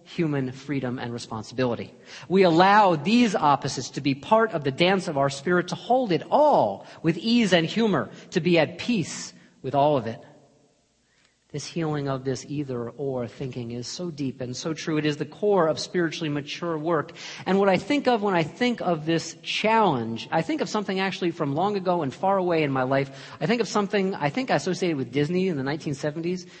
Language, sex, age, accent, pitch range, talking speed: English, male, 40-59, American, 145-180 Hz, 205 wpm